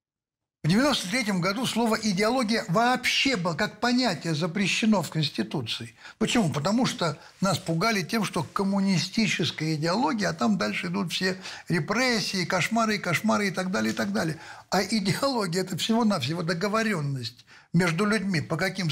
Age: 60-79